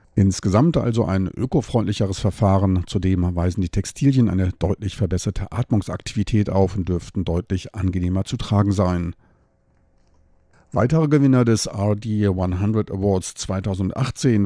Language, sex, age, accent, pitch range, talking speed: German, male, 50-69, German, 95-110 Hz, 110 wpm